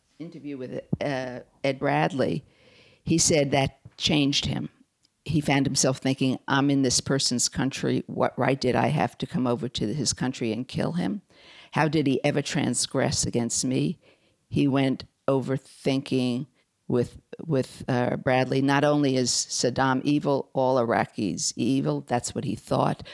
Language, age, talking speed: English, 50-69, 155 wpm